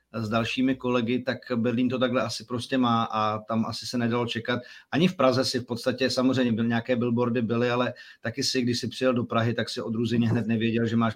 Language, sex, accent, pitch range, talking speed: Czech, male, native, 120-145 Hz, 225 wpm